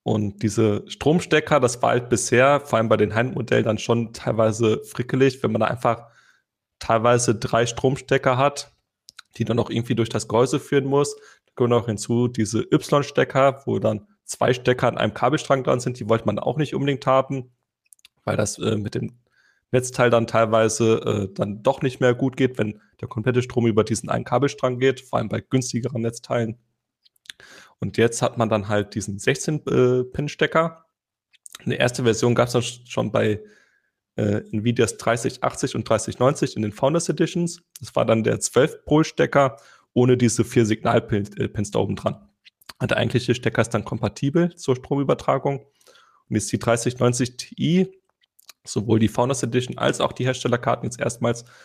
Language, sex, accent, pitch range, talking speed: German, male, German, 110-135 Hz, 165 wpm